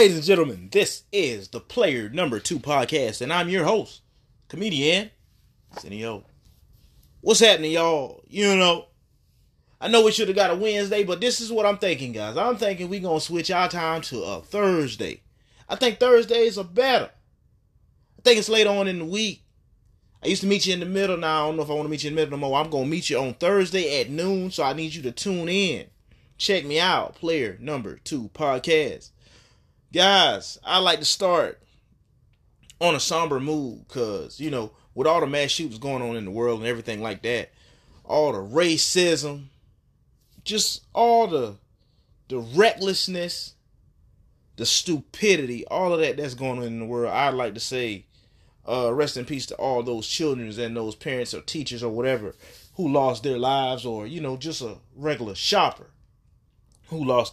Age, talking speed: 30-49, 195 wpm